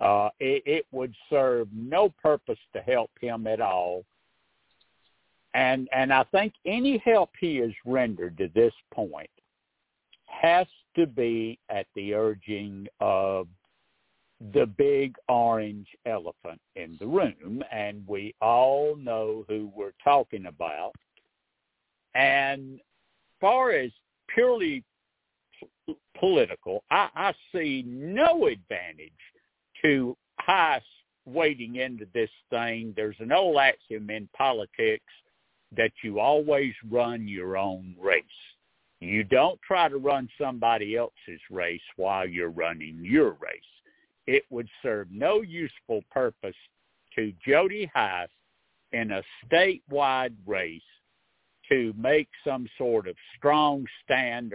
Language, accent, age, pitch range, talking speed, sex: English, American, 60-79, 105-150 Hz, 120 wpm, male